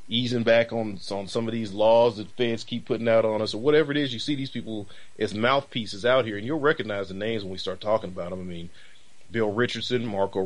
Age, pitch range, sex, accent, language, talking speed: 30-49, 105-125 Hz, male, American, English, 245 wpm